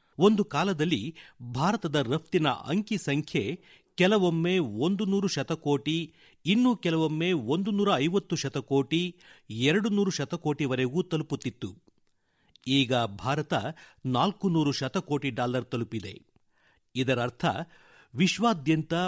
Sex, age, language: male, 50-69, Kannada